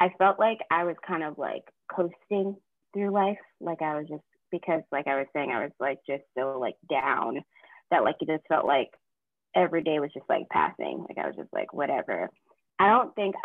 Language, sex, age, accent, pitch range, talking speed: English, female, 20-39, American, 160-200 Hz, 215 wpm